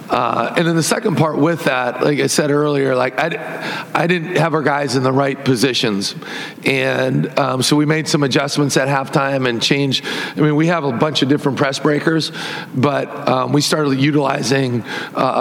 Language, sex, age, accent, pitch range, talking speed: English, male, 40-59, American, 135-170 Hz, 195 wpm